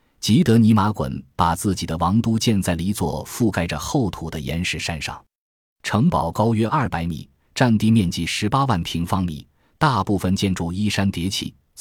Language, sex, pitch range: Chinese, male, 85-115 Hz